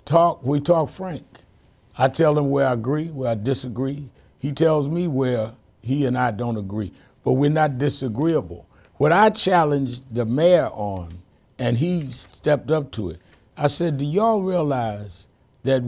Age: 60-79